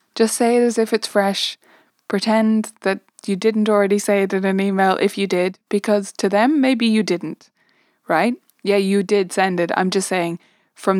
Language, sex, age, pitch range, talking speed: English, female, 20-39, 185-225 Hz, 195 wpm